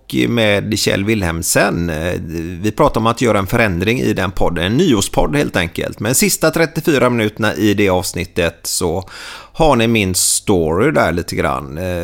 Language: Swedish